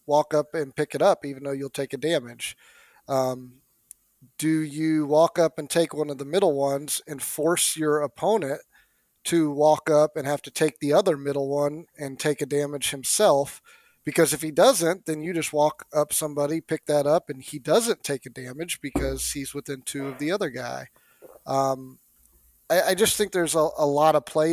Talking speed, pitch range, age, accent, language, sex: 200 wpm, 135-155 Hz, 30-49, American, English, male